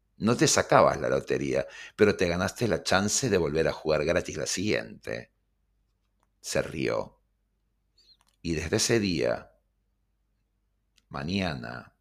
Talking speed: 120 wpm